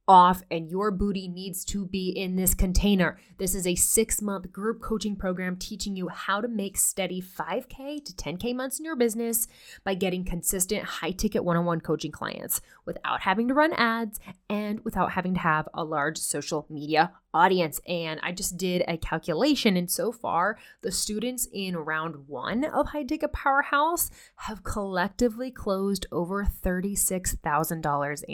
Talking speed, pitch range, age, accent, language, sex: 155 wpm, 170-225 Hz, 20-39, American, English, female